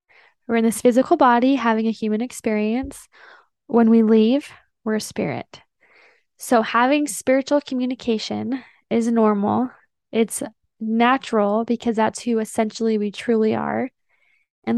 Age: 10-29